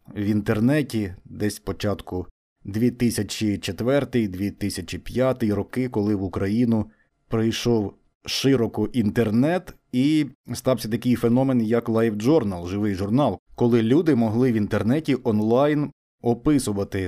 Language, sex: Ukrainian, male